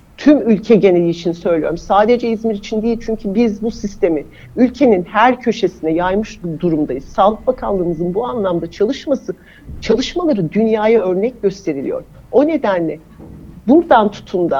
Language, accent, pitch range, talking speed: Turkish, native, 175-225 Hz, 125 wpm